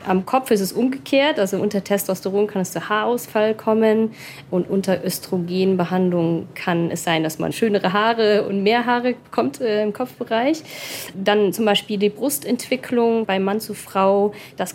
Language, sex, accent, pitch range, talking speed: German, female, German, 180-220 Hz, 165 wpm